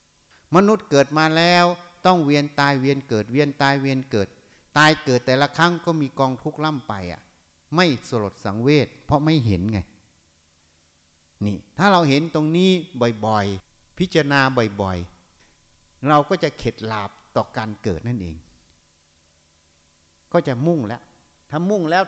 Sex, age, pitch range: male, 60-79, 115-175 Hz